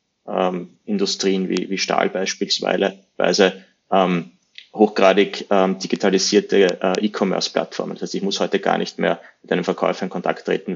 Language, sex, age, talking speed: German, male, 20-39, 145 wpm